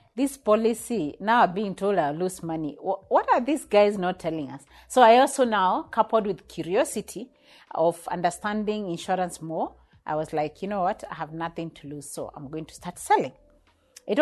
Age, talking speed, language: 40-59, 185 wpm, English